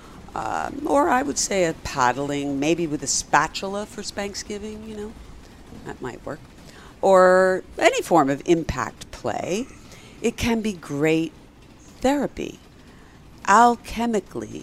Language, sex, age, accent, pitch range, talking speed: English, female, 60-79, American, 140-205 Hz, 125 wpm